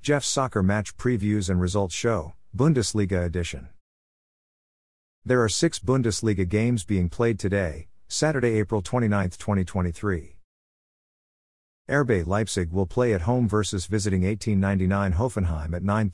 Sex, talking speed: male, 110 wpm